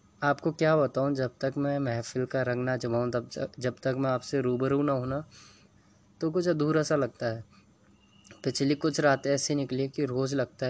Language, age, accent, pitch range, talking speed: Hindi, 20-39, native, 110-130 Hz, 190 wpm